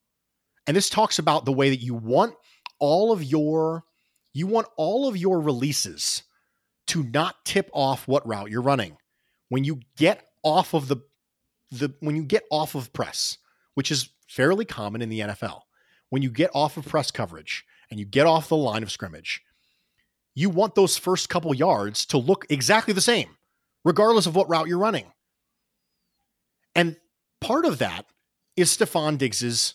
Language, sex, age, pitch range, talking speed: English, male, 30-49, 135-195 Hz, 170 wpm